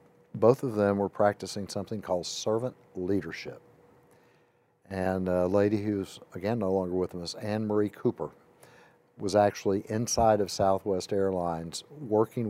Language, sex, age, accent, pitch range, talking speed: English, male, 60-79, American, 95-120 Hz, 135 wpm